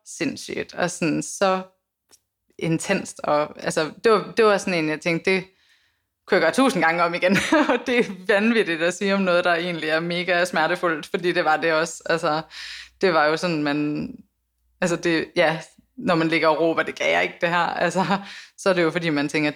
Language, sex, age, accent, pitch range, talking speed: Danish, female, 20-39, native, 155-200 Hz, 210 wpm